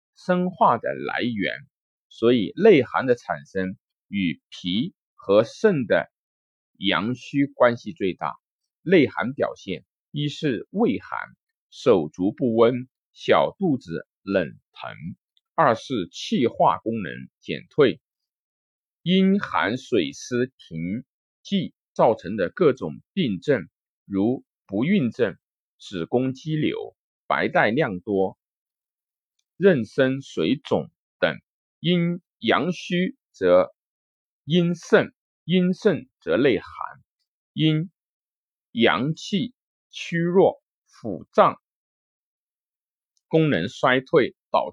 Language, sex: Chinese, male